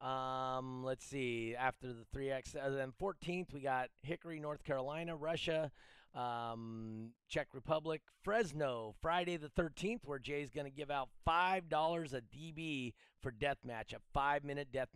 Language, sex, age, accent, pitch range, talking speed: English, male, 30-49, American, 125-155 Hz, 145 wpm